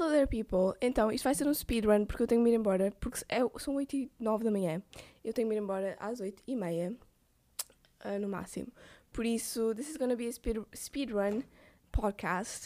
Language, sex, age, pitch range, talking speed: Portuguese, female, 10-29, 200-245 Hz, 205 wpm